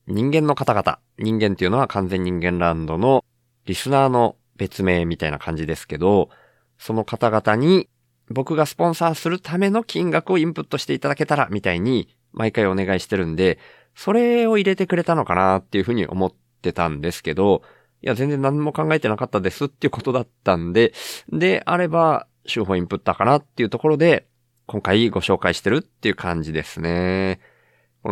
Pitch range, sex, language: 95-140 Hz, male, Japanese